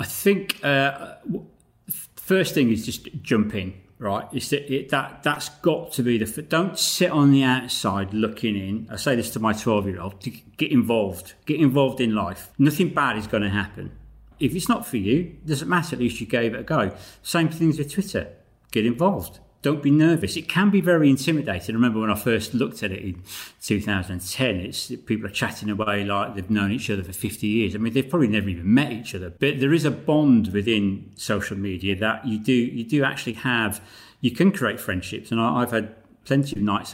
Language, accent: English, British